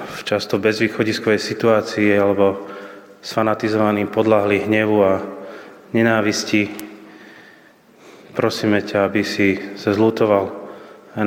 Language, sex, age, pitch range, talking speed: Slovak, male, 20-39, 100-115 Hz, 90 wpm